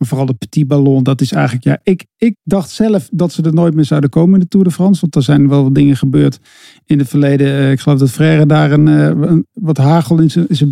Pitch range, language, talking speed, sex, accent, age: 140-170 Hz, Dutch, 260 wpm, male, Dutch, 50-69